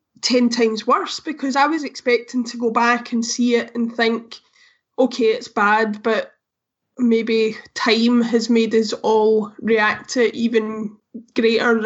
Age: 10-29